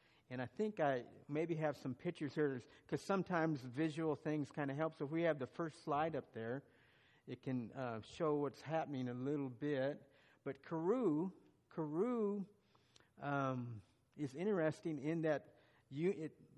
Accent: American